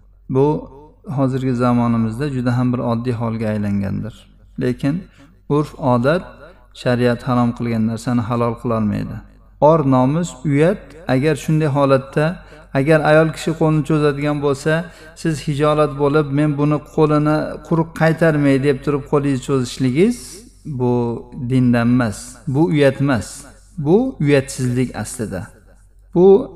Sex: male